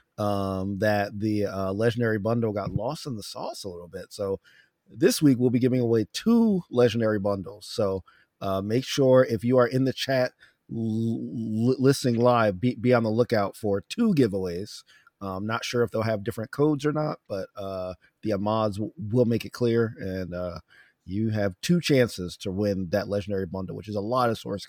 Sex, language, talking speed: male, English, 195 wpm